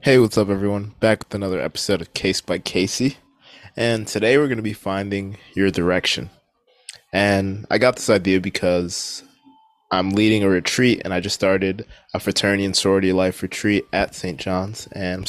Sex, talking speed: male, 180 wpm